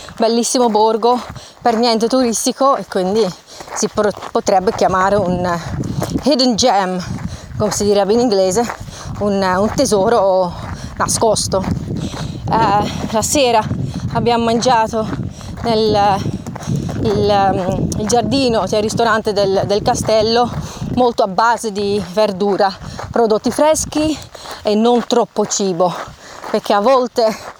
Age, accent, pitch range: 30-49, native, 200-240 Hz